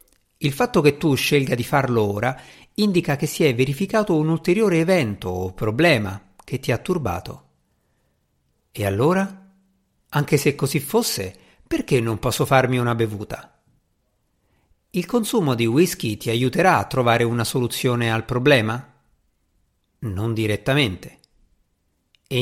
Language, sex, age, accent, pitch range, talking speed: Italian, male, 50-69, native, 110-160 Hz, 130 wpm